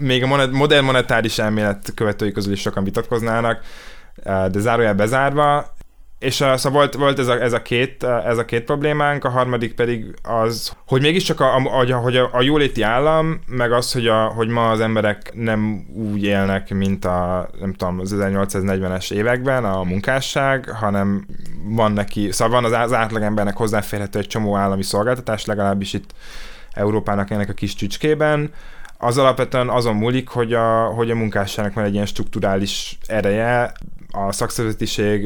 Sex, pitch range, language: male, 100-125 Hz, Hungarian